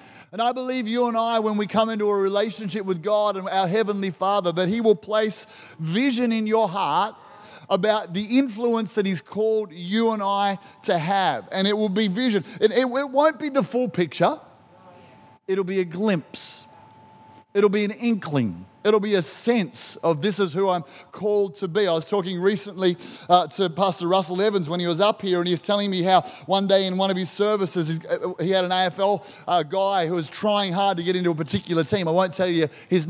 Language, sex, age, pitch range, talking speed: English, male, 30-49, 175-210 Hz, 215 wpm